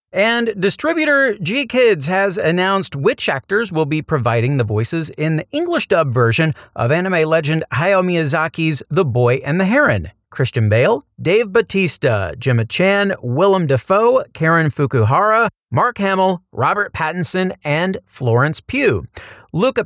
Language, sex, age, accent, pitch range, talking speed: English, male, 40-59, American, 125-180 Hz, 140 wpm